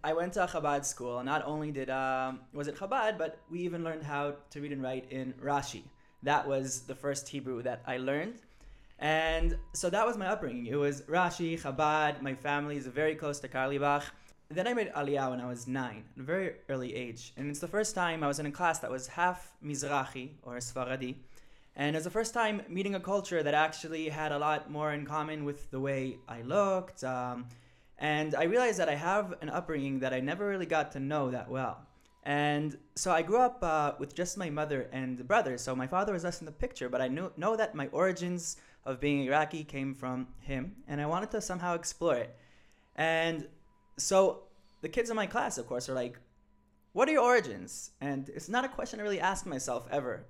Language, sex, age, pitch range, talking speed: English, male, 20-39, 135-180 Hz, 220 wpm